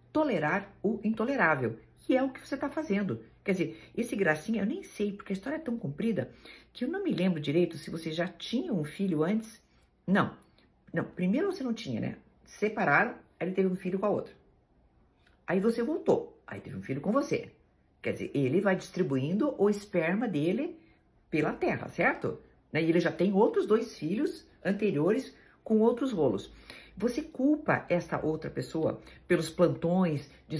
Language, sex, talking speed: Portuguese, female, 175 wpm